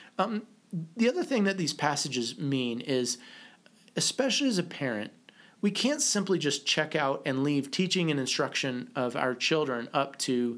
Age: 30-49